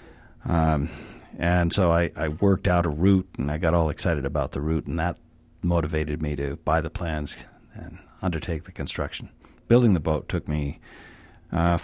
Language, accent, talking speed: English, American, 175 wpm